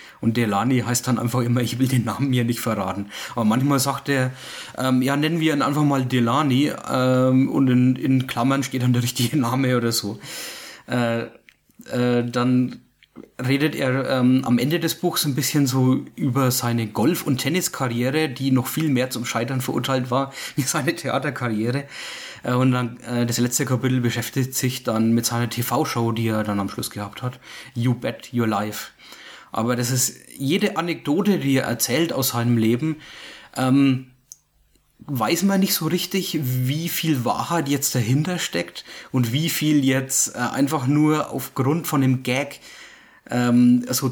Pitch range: 120-145 Hz